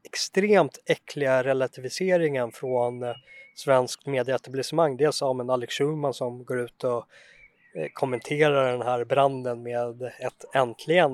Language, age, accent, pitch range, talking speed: Swedish, 20-39, native, 125-145 Hz, 120 wpm